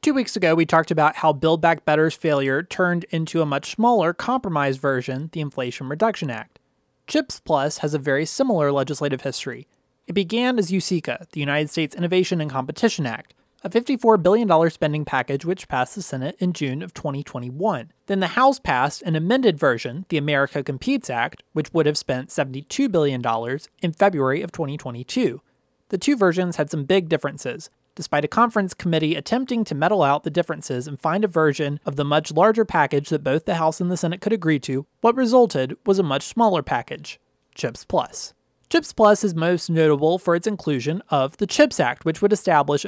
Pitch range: 145-195 Hz